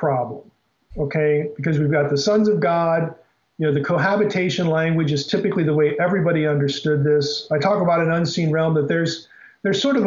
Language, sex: English, male